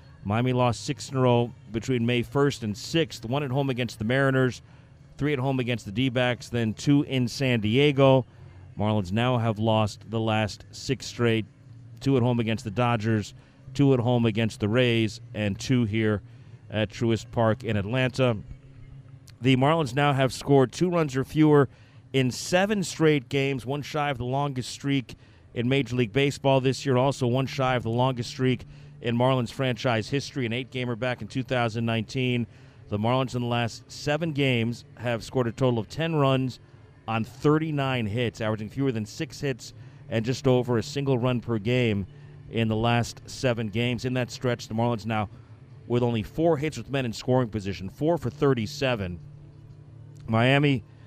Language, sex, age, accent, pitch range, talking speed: English, male, 40-59, American, 115-135 Hz, 175 wpm